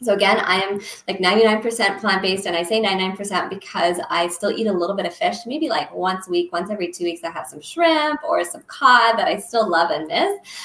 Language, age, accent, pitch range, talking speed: English, 20-39, American, 185-220 Hz, 240 wpm